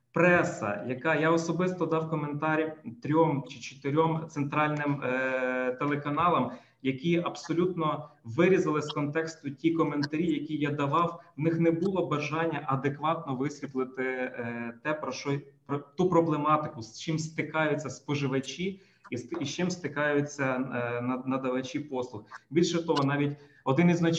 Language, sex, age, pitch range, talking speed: Ukrainian, male, 20-39, 130-165 Hz, 135 wpm